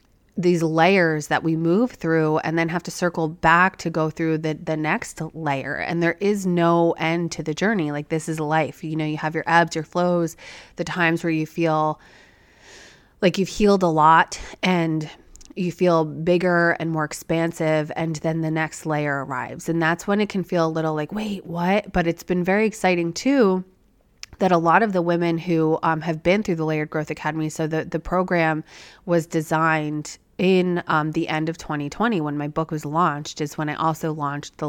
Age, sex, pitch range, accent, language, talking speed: 30-49, female, 155-175 Hz, American, English, 200 wpm